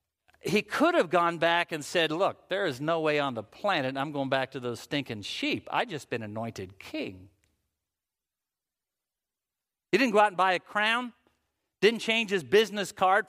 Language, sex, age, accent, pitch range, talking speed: English, male, 50-69, American, 155-220 Hz, 180 wpm